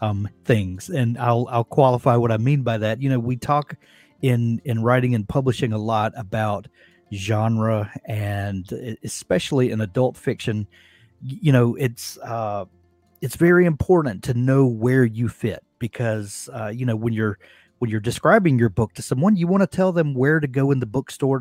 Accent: American